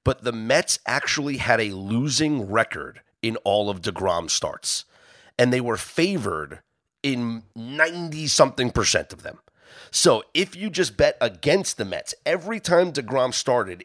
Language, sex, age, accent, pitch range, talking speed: English, male, 30-49, American, 100-135 Hz, 150 wpm